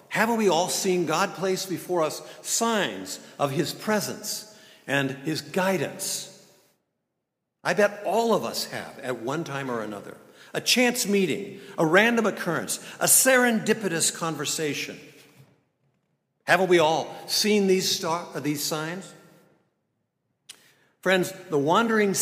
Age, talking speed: 60-79, 125 wpm